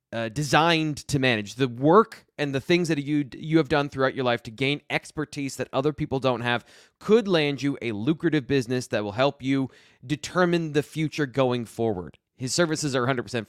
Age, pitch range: 20-39, 125-155 Hz